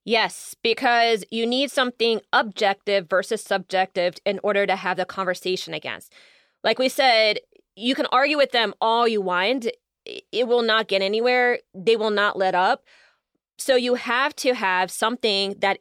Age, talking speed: 20-39, 165 wpm